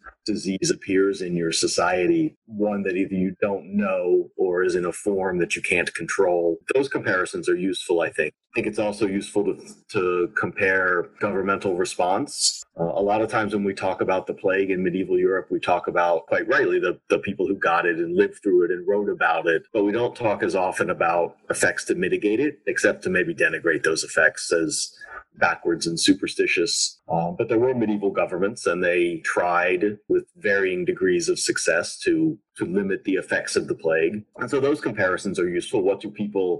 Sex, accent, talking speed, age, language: male, American, 195 wpm, 40-59, English